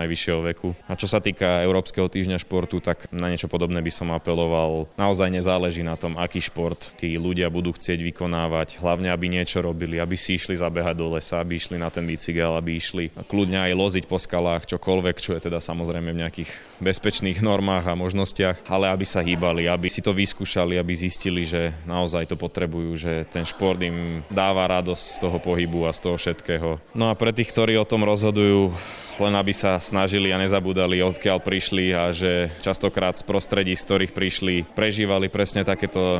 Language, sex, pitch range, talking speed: Slovak, male, 85-95 Hz, 190 wpm